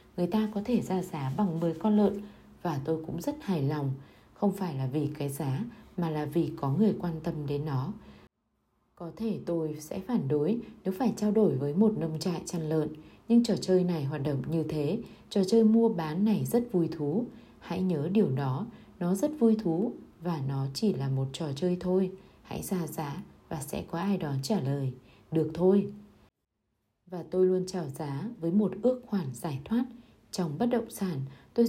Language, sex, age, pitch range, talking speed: Vietnamese, female, 20-39, 150-200 Hz, 205 wpm